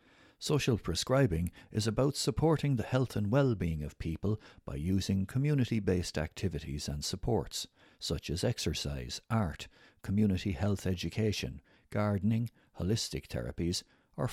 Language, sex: English, male